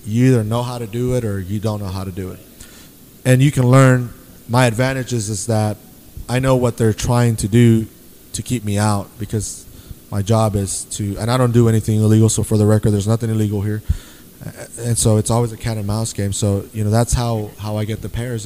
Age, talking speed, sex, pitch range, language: 20-39, 235 wpm, male, 105-120 Hz, English